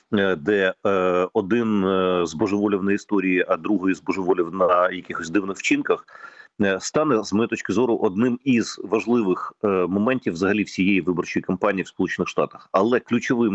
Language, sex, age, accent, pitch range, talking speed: Ukrainian, male, 40-59, native, 90-110 Hz, 135 wpm